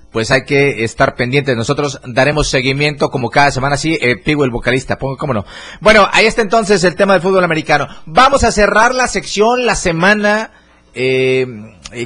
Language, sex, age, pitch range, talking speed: Spanish, male, 30-49, 135-180 Hz, 180 wpm